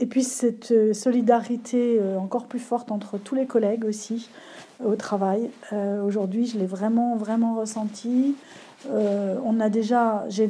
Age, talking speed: 40-59, 150 wpm